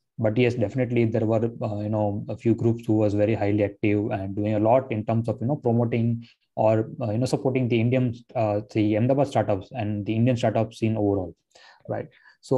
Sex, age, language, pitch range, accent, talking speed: male, 20-39, English, 105-130 Hz, Indian, 220 wpm